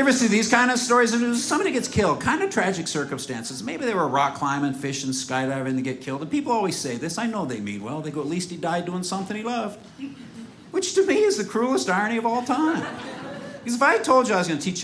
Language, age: English, 50-69